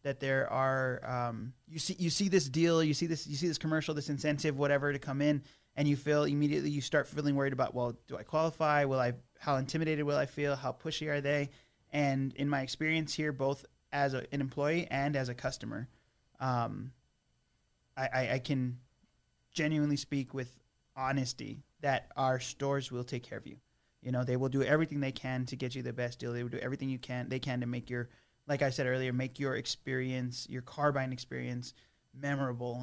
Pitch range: 125-145 Hz